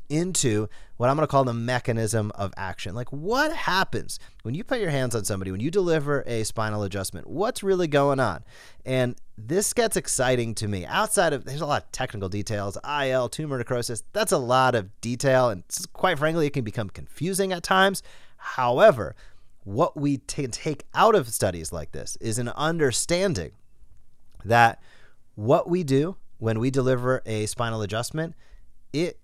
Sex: male